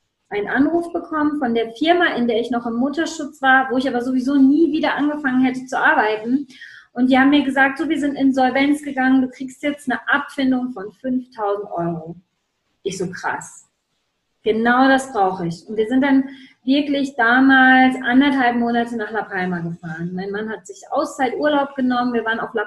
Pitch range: 225-280 Hz